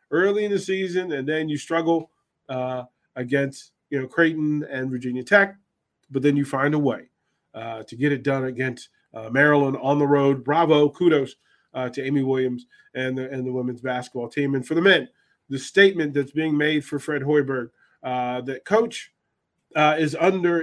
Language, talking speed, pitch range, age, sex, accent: English, 185 wpm, 135-165 Hz, 40-59, male, American